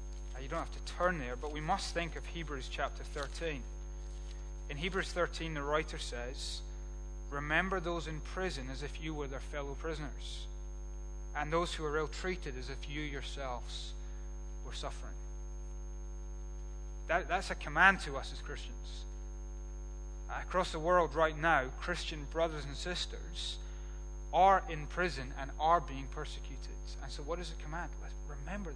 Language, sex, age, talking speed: English, male, 30-49, 150 wpm